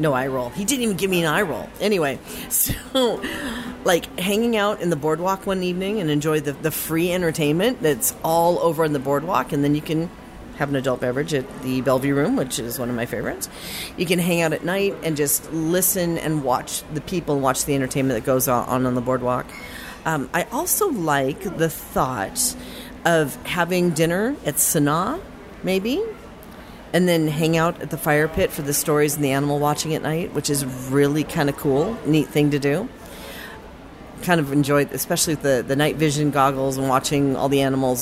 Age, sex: 40-59, female